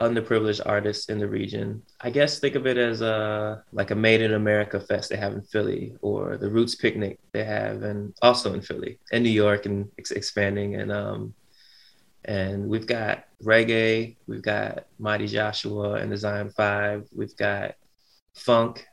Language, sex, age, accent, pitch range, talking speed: English, male, 20-39, American, 105-110 Hz, 170 wpm